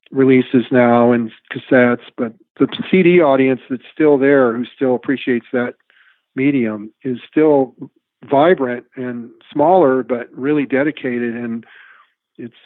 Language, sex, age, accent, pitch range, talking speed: English, male, 50-69, American, 115-135 Hz, 125 wpm